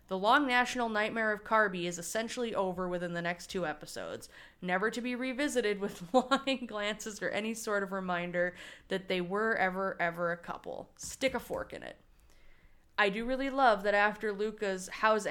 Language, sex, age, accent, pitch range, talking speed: English, female, 20-39, American, 180-225 Hz, 180 wpm